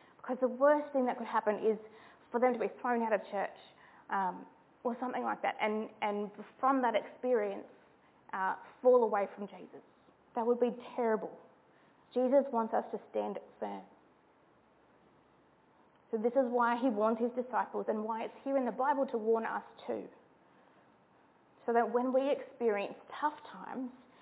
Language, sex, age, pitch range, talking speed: English, female, 20-39, 220-270 Hz, 165 wpm